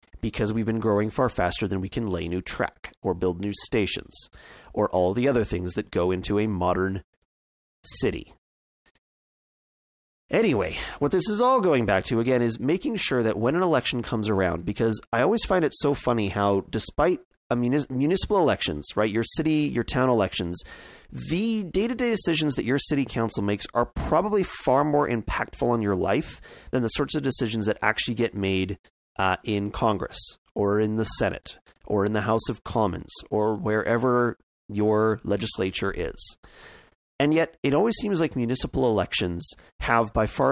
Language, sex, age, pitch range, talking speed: English, male, 30-49, 95-130 Hz, 170 wpm